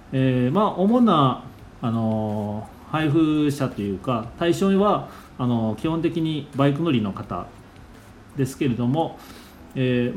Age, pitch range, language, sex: 40-59, 110-140 Hz, Japanese, male